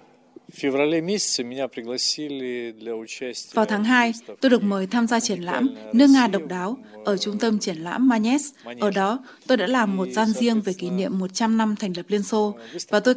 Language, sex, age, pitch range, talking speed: Vietnamese, female, 20-39, 195-230 Hz, 180 wpm